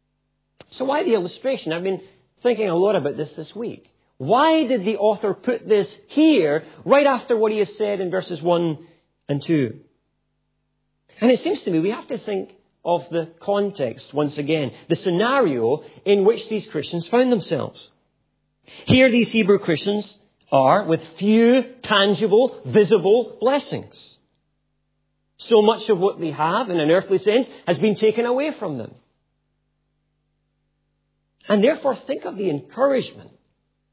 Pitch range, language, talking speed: 160-230 Hz, English, 150 wpm